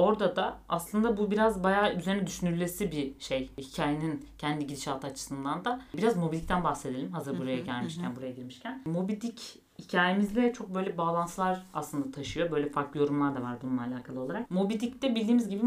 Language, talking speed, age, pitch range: Turkish, 155 wpm, 40-59, 145-190 Hz